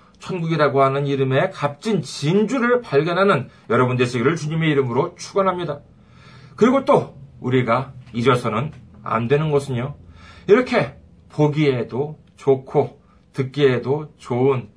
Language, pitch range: Korean, 120-190 Hz